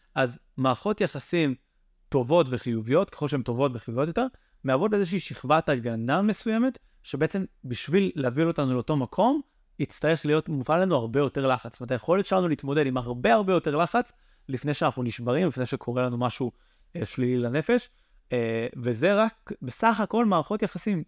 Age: 30-49